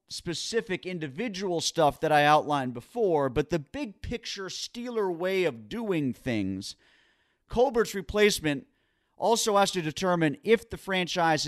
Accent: American